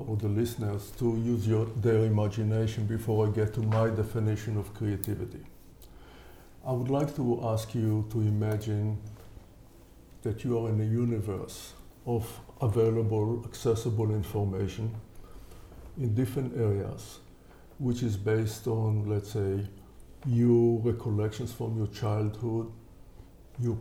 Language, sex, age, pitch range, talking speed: English, male, 50-69, 105-120 Hz, 125 wpm